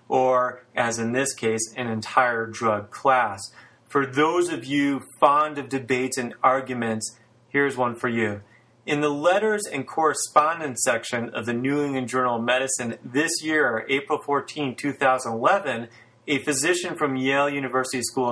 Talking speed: 150 wpm